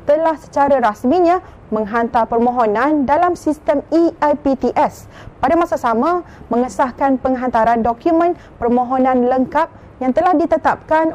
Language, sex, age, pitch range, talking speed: Malay, female, 30-49, 250-300 Hz, 100 wpm